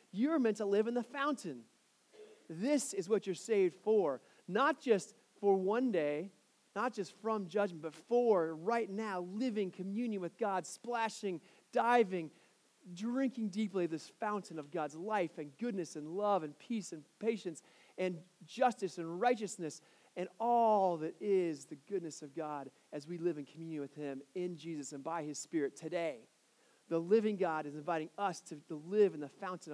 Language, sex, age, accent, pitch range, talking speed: English, male, 40-59, American, 155-215 Hz, 170 wpm